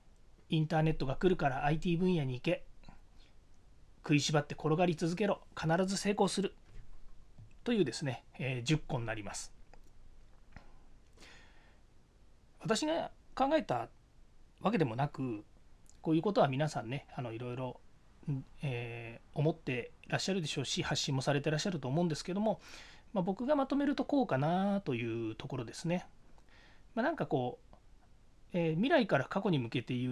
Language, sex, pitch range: Japanese, male, 125-185 Hz